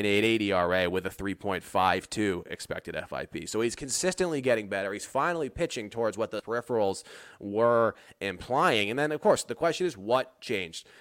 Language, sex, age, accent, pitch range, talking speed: English, male, 30-49, American, 105-130 Hz, 165 wpm